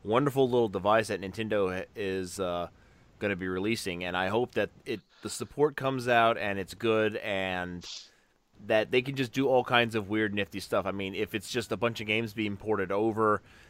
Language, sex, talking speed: English, male, 205 wpm